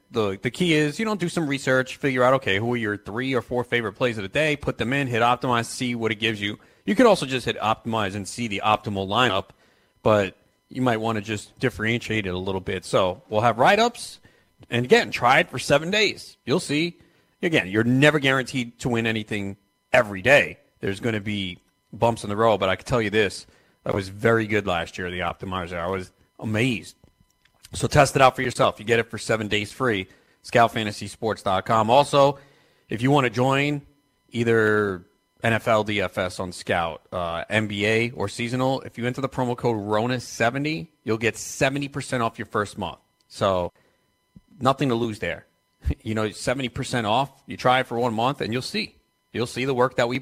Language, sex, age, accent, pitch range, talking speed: English, male, 30-49, American, 105-130 Hz, 205 wpm